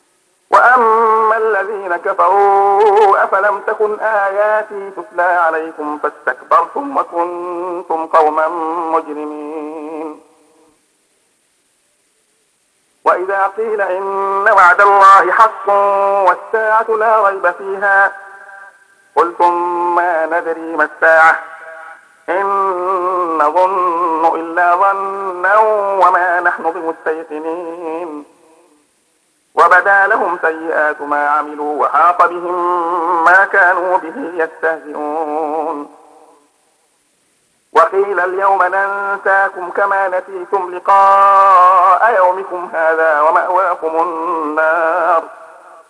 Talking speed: 70 wpm